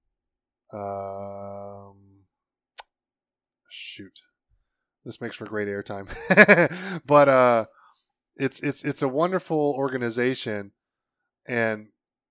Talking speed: 80 wpm